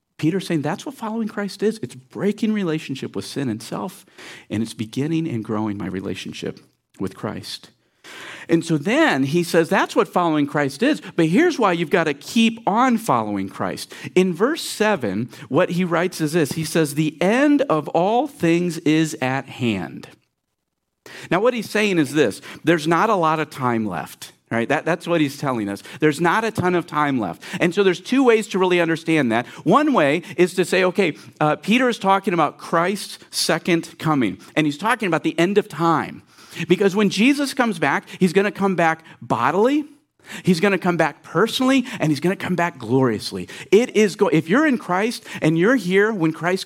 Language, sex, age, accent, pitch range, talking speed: English, male, 50-69, American, 160-220 Hz, 195 wpm